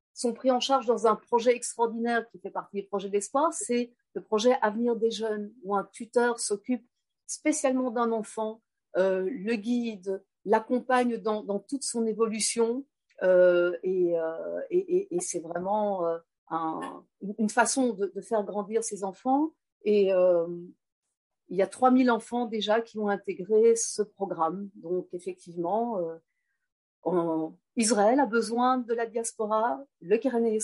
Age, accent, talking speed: 50-69, French, 150 wpm